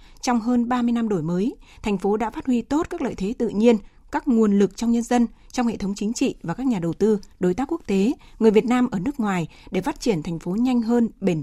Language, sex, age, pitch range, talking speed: Vietnamese, female, 20-39, 190-245 Hz, 270 wpm